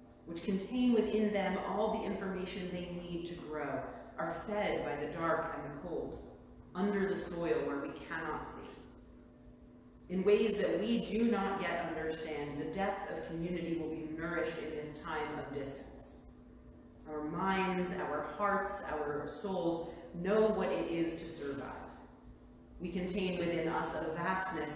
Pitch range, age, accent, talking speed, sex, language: 150-190 Hz, 40-59, American, 155 wpm, female, English